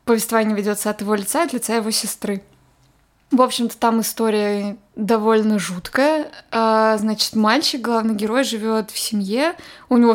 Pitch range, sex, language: 210-240 Hz, female, Russian